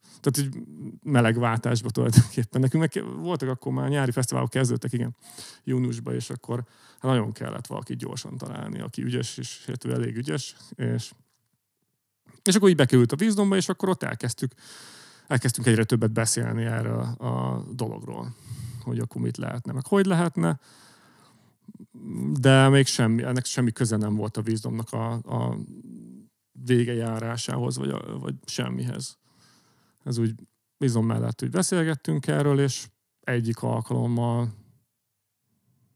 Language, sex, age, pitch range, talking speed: Hungarian, male, 30-49, 110-130 Hz, 135 wpm